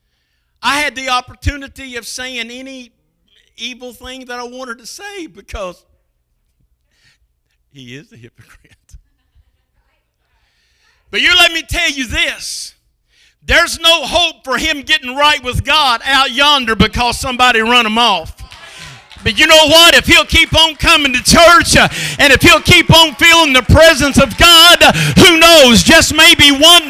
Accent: American